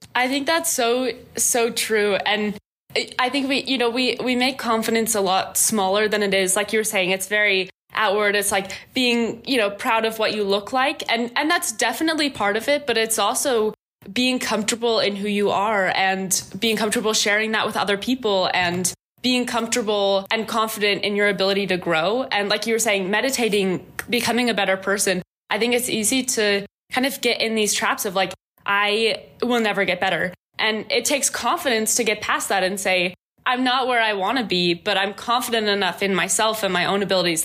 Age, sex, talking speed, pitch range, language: 10-29, female, 205 wpm, 195-240 Hz, English